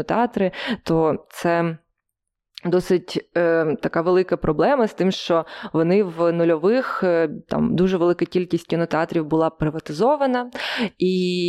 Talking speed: 120 wpm